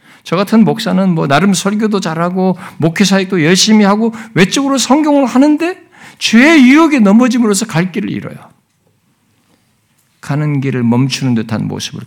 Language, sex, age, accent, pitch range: Korean, male, 50-69, native, 140-225 Hz